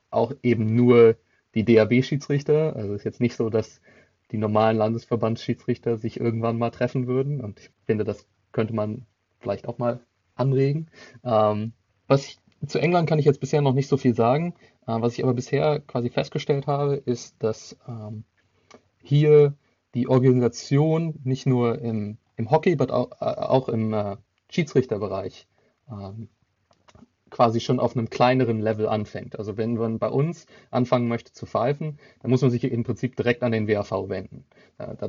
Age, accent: 30-49, German